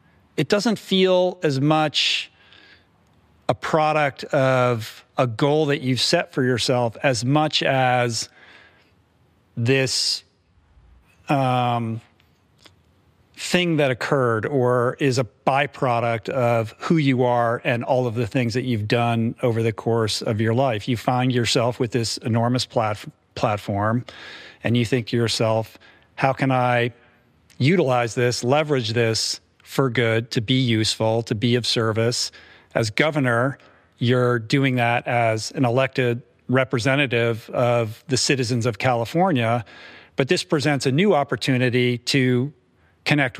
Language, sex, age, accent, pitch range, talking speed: English, male, 40-59, American, 115-135 Hz, 130 wpm